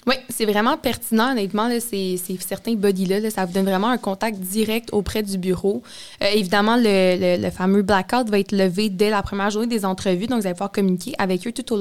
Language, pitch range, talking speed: French, 190-220 Hz, 250 wpm